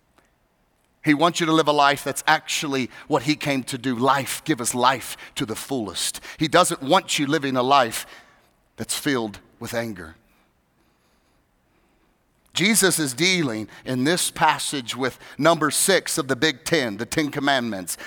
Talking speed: 160 wpm